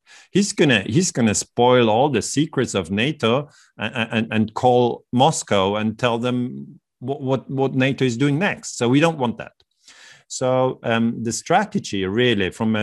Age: 40-59